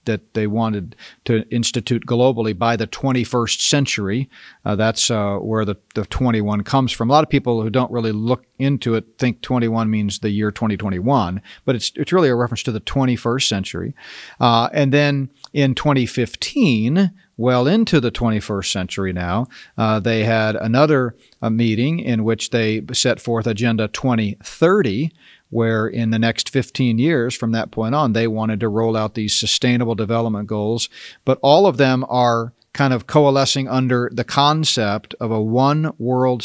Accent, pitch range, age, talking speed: American, 110-130 Hz, 40-59, 170 wpm